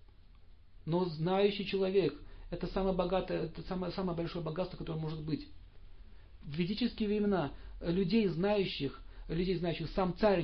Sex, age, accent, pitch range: male, 40-59, native, 120-190 Hz